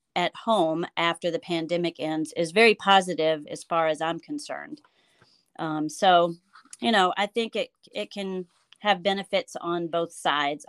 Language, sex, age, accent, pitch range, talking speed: English, female, 40-59, American, 165-190 Hz, 155 wpm